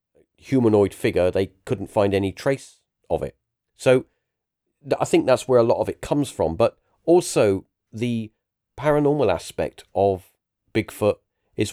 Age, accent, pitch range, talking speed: 40-59, British, 100-130 Hz, 150 wpm